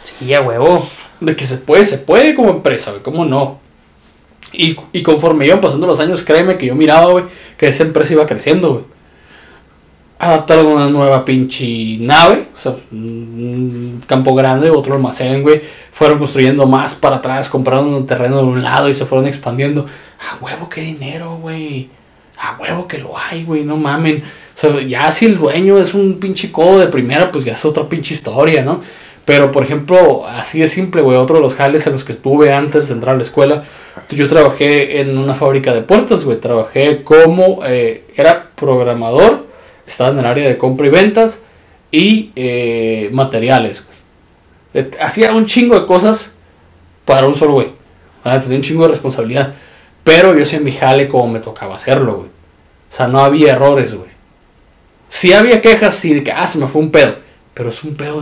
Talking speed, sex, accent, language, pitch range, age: 190 wpm, male, Mexican, Spanish, 125-155 Hz, 20-39